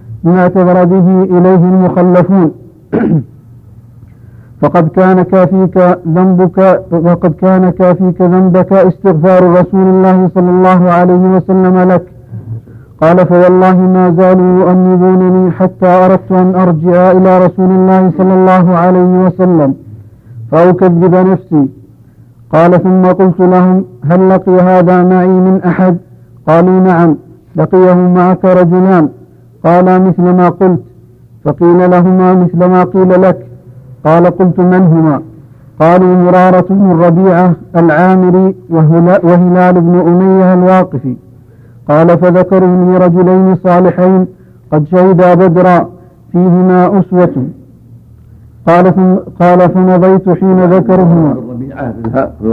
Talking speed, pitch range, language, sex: 105 wpm, 155-185 Hz, Arabic, male